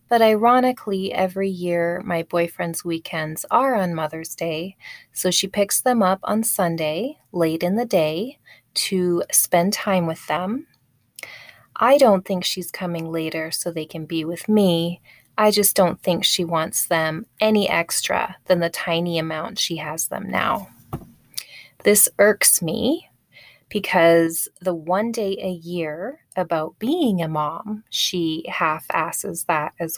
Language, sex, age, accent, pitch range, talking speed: English, female, 20-39, American, 165-205 Hz, 145 wpm